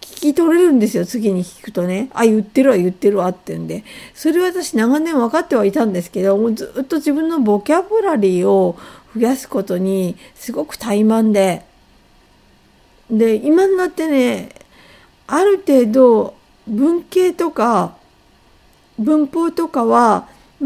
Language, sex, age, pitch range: Japanese, female, 50-69, 205-285 Hz